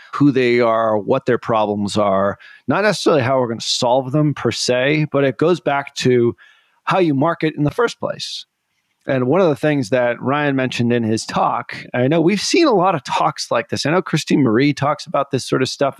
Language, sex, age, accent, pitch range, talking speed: English, male, 30-49, American, 115-150 Hz, 225 wpm